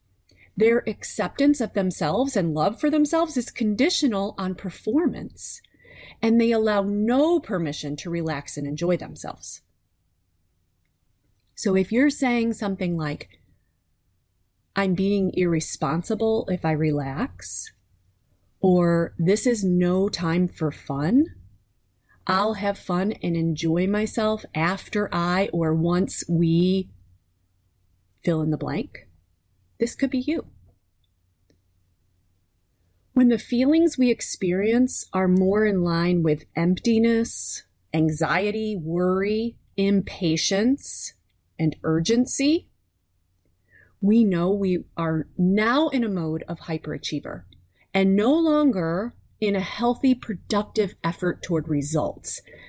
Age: 30-49